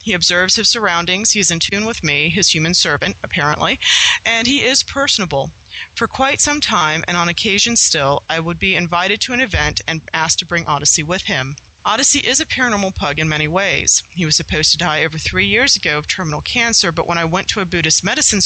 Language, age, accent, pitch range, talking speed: English, 40-59, American, 160-205 Hz, 220 wpm